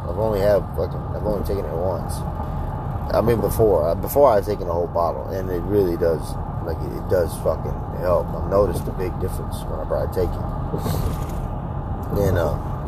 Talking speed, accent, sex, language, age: 175 wpm, American, male, English, 30-49